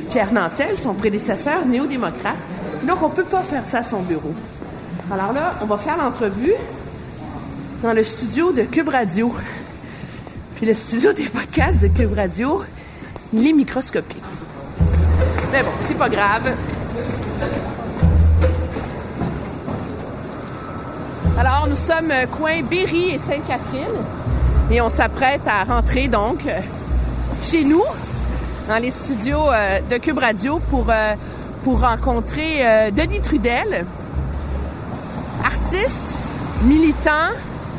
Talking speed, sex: 120 wpm, female